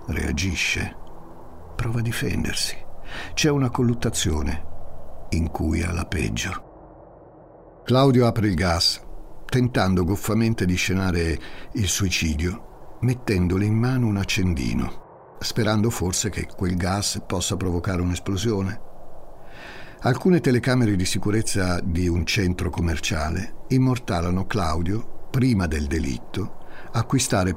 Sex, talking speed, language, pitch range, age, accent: male, 105 wpm, Italian, 85-115 Hz, 60-79, native